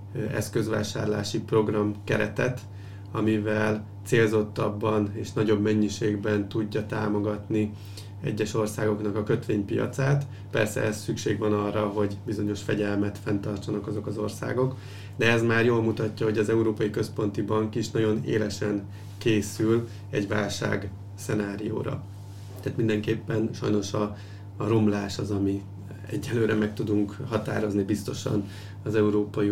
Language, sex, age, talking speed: Hungarian, male, 30-49, 115 wpm